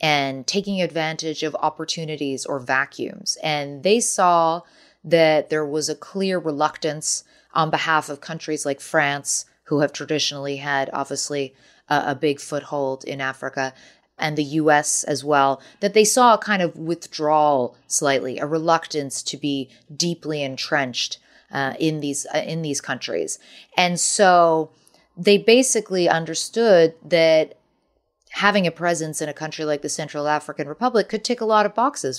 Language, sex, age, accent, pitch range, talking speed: English, female, 30-49, American, 145-180 Hz, 150 wpm